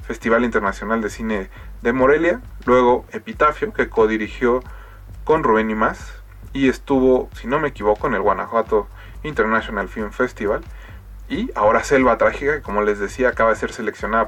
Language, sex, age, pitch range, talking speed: Spanish, male, 20-39, 105-130 Hz, 160 wpm